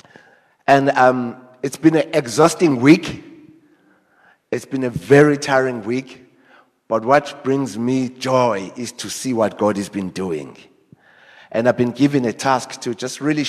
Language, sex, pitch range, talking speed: English, male, 120-145 Hz, 155 wpm